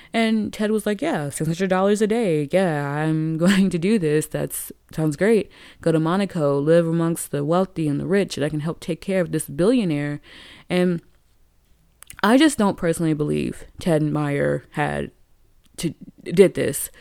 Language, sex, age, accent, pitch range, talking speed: English, female, 20-39, American, 155-195 Hz, 170 wpm